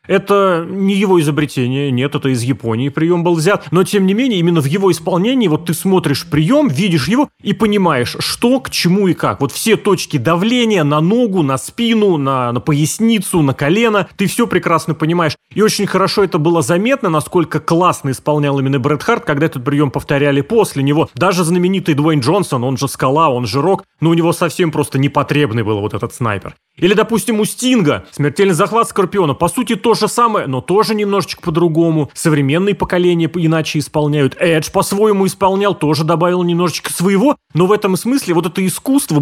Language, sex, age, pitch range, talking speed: Russian, male, 30-49, 150-200 Hz, 185 wpm